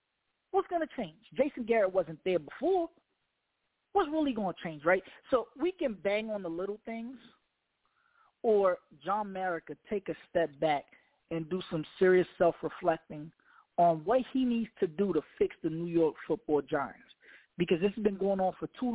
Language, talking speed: English, 175 wpm